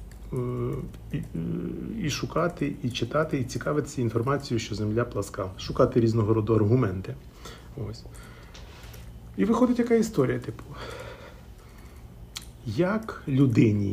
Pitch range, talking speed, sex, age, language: 100-140 Hz, 100 wpm, male, 40-59, Ukrainian